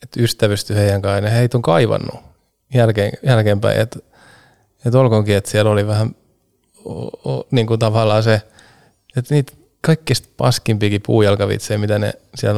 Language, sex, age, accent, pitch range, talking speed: Finnish, male, 20-39, native, 105-120 Hz, 145 wpm